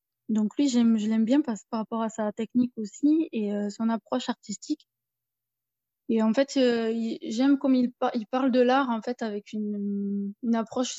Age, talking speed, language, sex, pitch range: 20-39, 200 wpm, French, female, 215-250 Hz